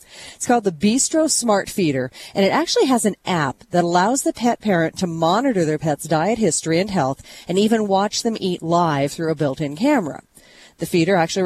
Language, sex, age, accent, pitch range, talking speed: English, female, 40-59, American, 165-230 Hz, 200 wpm